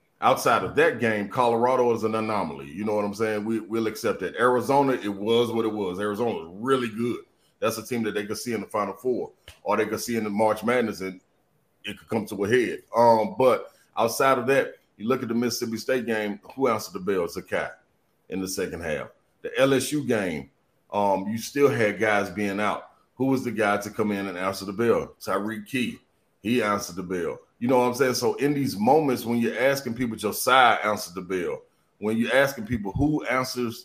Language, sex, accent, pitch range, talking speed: English, male, American, 105-125 Hz, 220 wpm